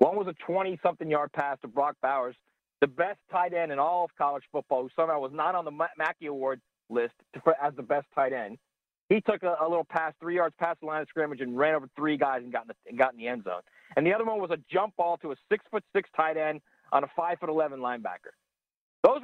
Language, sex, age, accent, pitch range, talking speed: English, male, 40-59, American, 155-215 Hz, 240 wpm